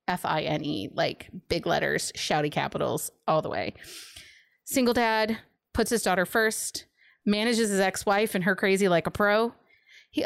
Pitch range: 175-220 Hz